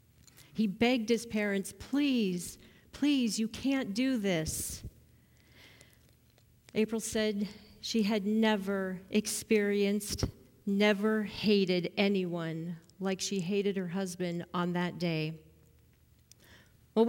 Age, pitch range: 40-59, 175-225 Hz